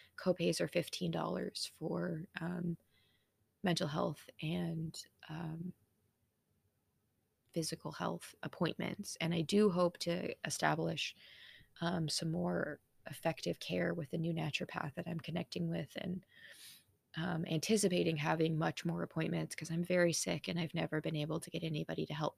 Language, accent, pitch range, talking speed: English, American, 155-180 Hz, 140 wpm